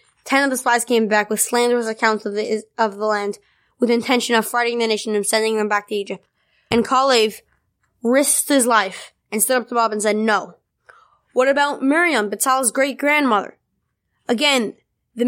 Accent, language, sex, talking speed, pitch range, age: American, English, female, 180 wpm, 215-255 Hz, 10-29